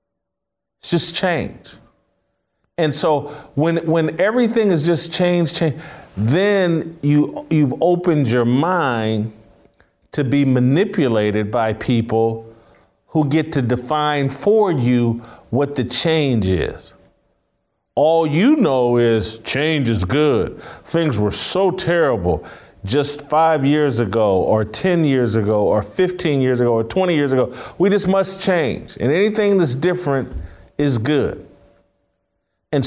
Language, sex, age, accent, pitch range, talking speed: English, male, 40-59, American, 120-165 Hz, 130 wpm